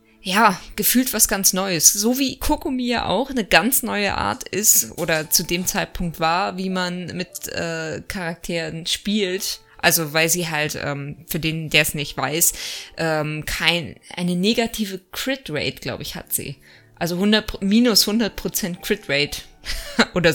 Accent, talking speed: German, 155 wpm